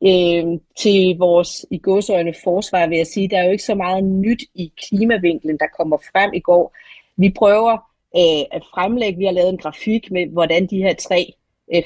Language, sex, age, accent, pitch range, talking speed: Danish, female, 30-49, native, 160-195 Hz, 190 wpm